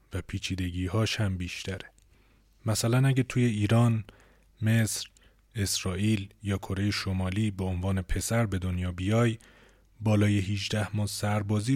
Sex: male